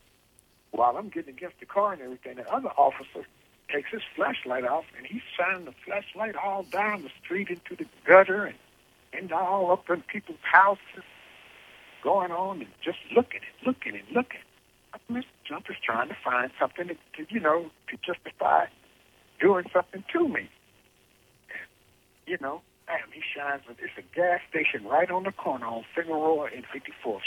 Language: English